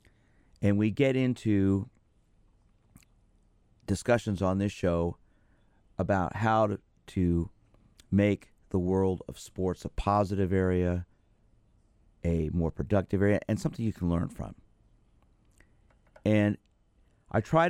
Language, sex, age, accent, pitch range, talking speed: English, male, 40-59, American, 90-110 Hz, 110 wpm